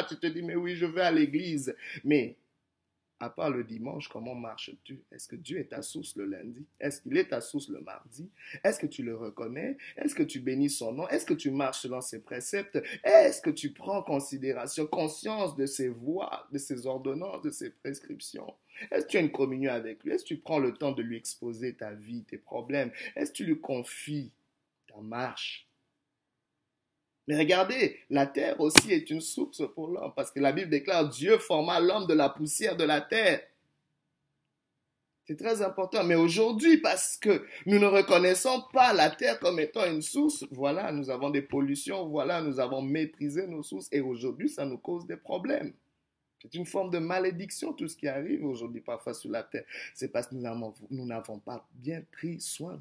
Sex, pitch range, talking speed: male, 130-195 Hz, 200 wpm